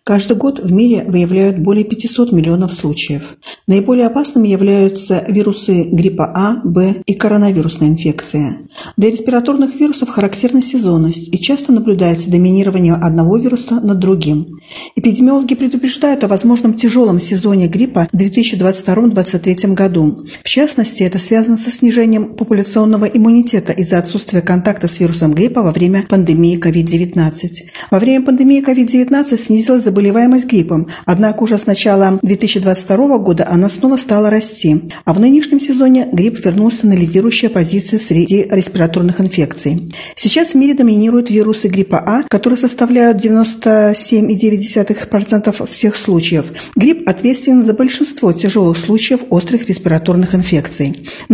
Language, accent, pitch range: Russian, native, 180-235 Hz